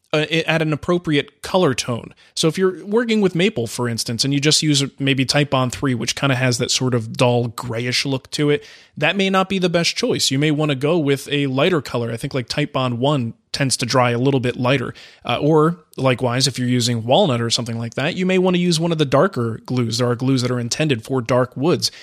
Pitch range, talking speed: 125-160 Hz, 255 wpm